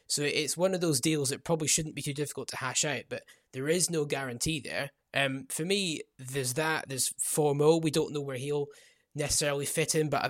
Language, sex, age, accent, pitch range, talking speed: English, male, 20-39, British, 130-155 Hz, 220 wpm